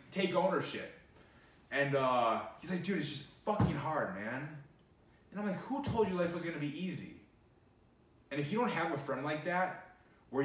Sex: male